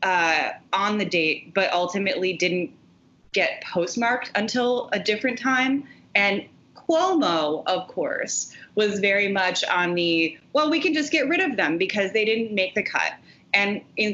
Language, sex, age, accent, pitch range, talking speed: English, female, 30-49, American, 170-230 Hz, 160 wpm